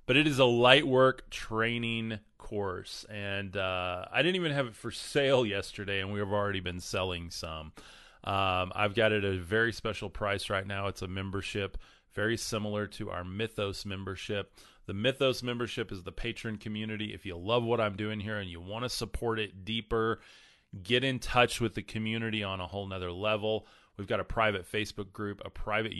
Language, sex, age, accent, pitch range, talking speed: English, male, 30-49, American, 95-110 Hz, 195 wpm